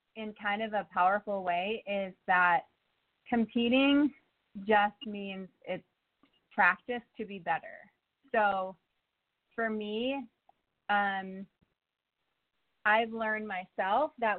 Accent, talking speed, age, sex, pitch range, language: American, 100 wpm, 30-49, female, 185-225 Hz, English